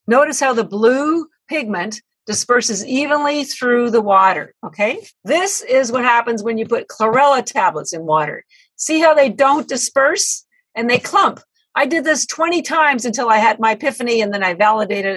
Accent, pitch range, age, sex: American, 195-275 Hz, 50-69, female